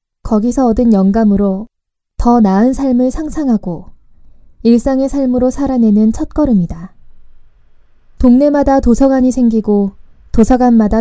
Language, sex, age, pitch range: Korean, female, 20-39, 200-255 Hz